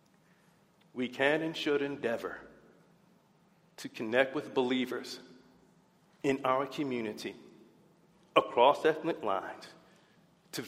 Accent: American